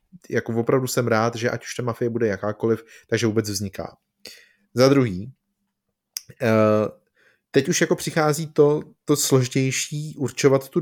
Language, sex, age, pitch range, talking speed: Czech, male, 30-49, 120-145 Hz, 140 wpm